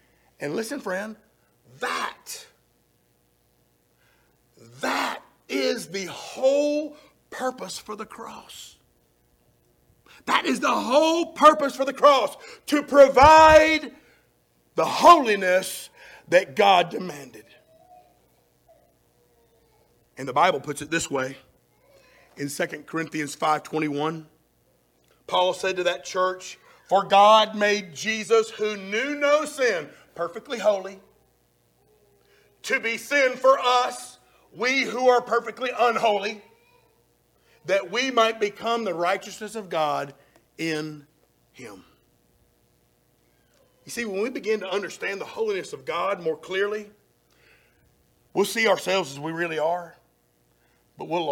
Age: 50-69